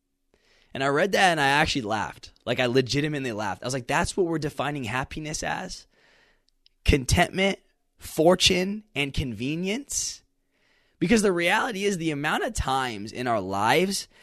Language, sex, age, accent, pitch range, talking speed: English, male, 20-39, American, 130-185 Hz, 150 wpm